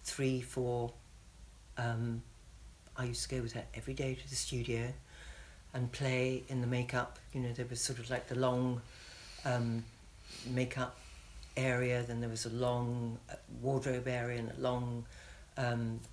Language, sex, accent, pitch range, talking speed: English, female, British, 115-130 Hz, 155 wpm